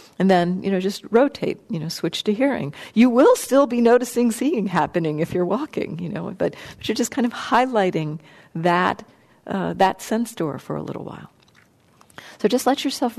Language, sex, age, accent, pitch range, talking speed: English, female, 50-69, American, 165-205 Hz, 195 wpm